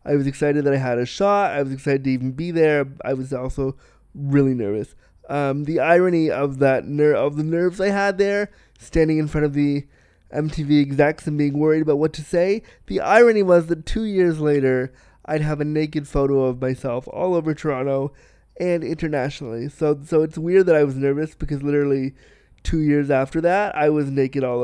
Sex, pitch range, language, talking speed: male, 135-155 Hz, English, 200 wpm